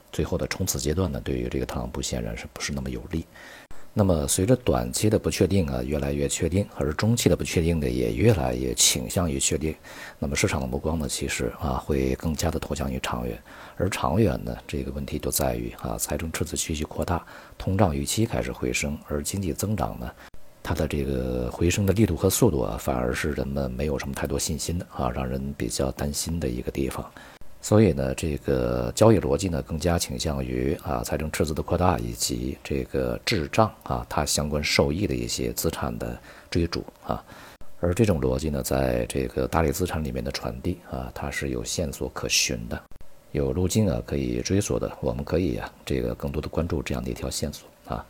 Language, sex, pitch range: Chinese, male, 65-85 Hz